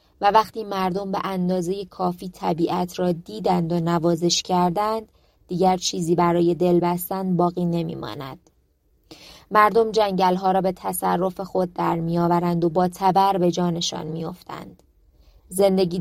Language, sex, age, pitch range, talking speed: Persian, female, 20-39, 170-190 Hz, 140 wpm